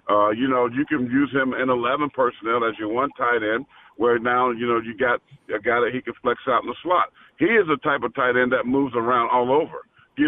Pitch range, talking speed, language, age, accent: 125-170 Hz, 255 wpm, English, 50-69, American